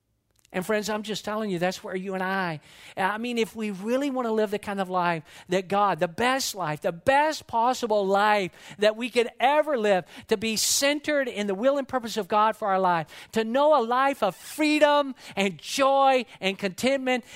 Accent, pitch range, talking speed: American, 155-220 Hz, 205 wpm